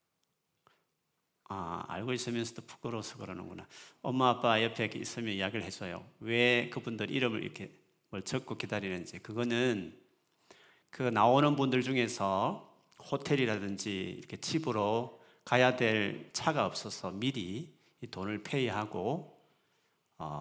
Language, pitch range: Korean, 105-135 Hz